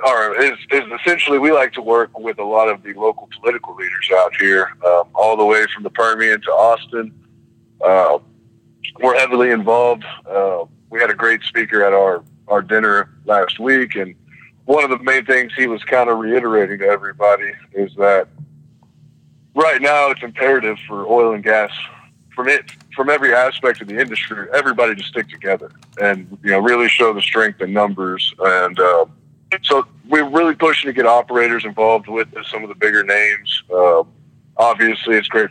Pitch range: 100-120 Hz